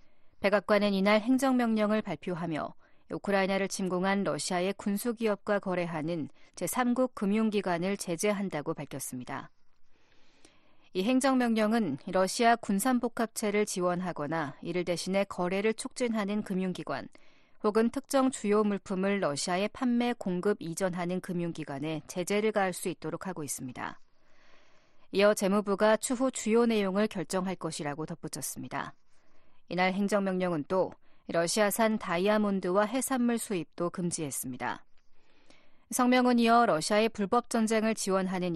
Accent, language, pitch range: native, Korean, 170-220 Hz